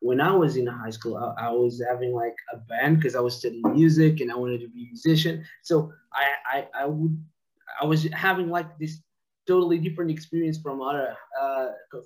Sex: male